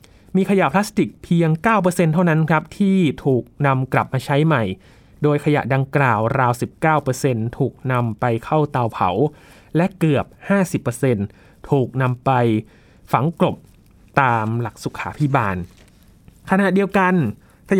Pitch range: 115-155 Hz